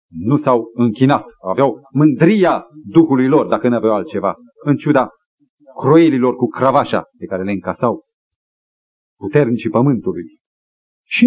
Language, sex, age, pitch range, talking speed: Romanian, male, 40-59, 110-170 Hz, 115 wpm